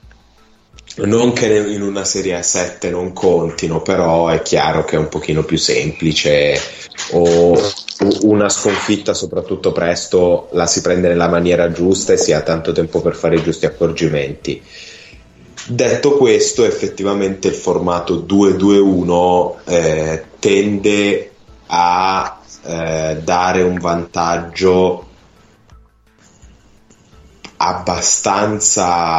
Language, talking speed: Italian, 105 wpm